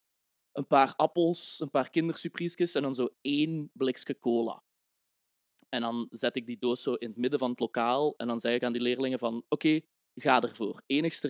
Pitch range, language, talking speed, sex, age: 115-140 Hz, Dutch, 200 wpm, male, 20-39